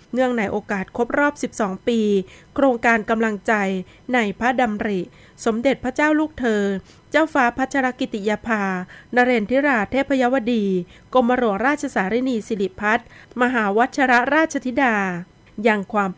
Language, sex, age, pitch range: Thai, female, 20-39, 200-255 Hz